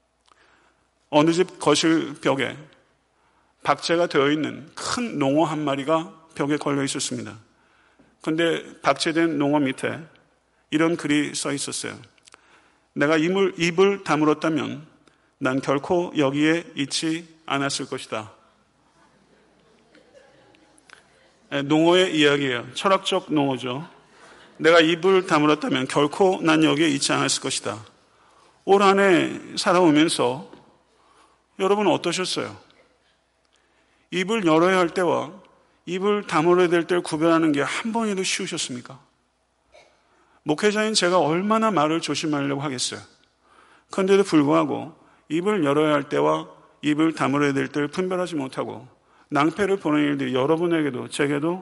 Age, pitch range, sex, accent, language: 40-59, 145-185 Hz, male, native, Korean